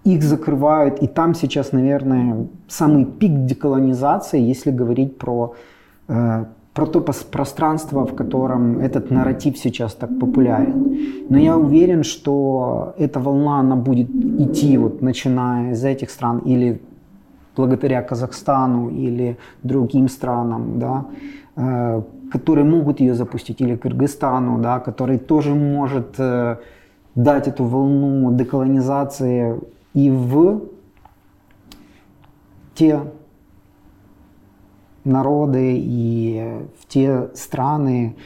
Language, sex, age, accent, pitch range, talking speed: Russian, male, 30-49, native, 120-145 Hz, 100 wpm